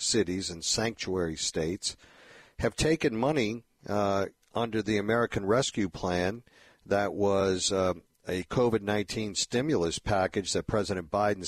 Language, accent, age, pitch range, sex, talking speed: English, American, 50-69, 90-110 Hz, male, 120 wpm